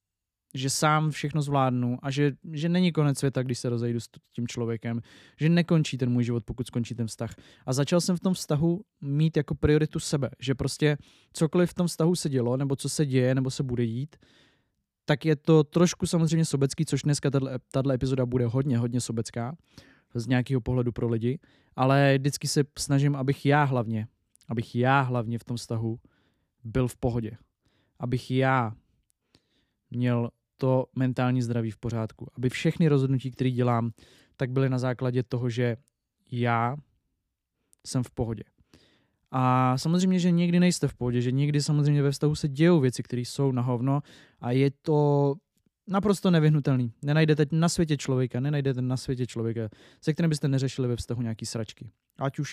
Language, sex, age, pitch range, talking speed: Czech, male, 20-39, 120-150 Hz, 170 wpm